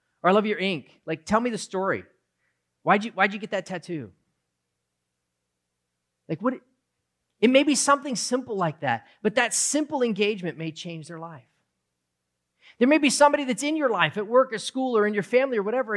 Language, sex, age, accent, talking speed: English, male, 40-59, American, 200 wpm